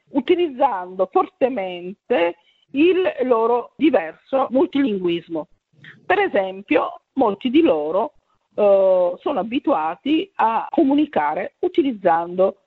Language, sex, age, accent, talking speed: English, female, 50-69, Italian, 80 wpm